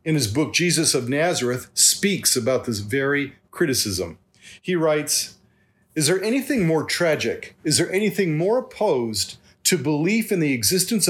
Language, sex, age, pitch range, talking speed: English, male, 40-59, 130-185 Hz, 150 wpm